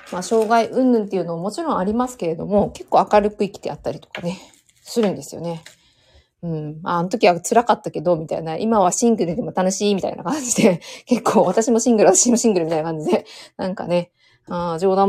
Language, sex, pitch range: Japanese, female, 170-230 Hz